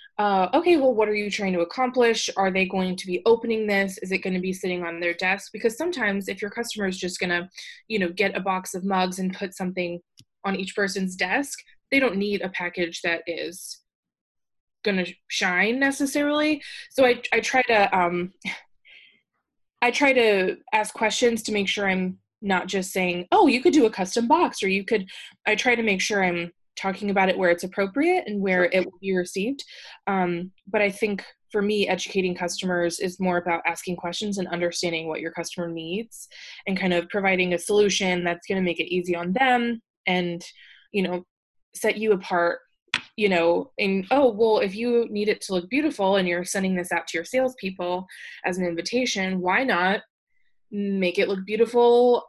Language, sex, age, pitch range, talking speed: English, female, 20-39, 180-220 Hz, 200 wpm